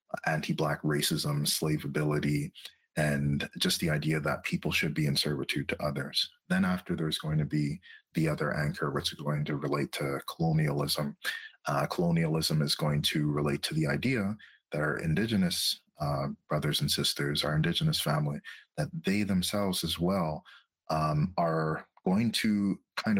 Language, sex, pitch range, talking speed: English, male, 75-125 Hz, 155 wpm